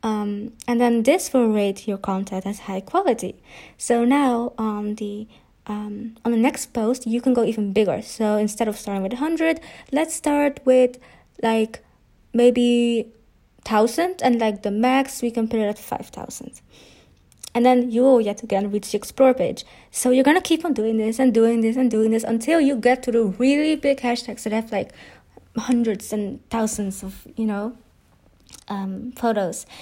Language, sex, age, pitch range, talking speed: English, female, 20-39, 220-275 Hz, 180 wpm